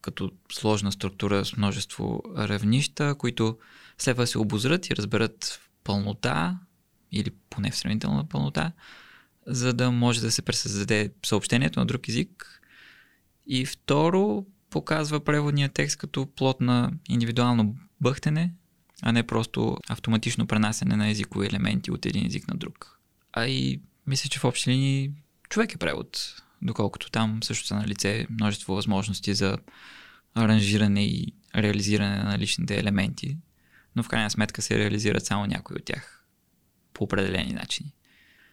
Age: 20-39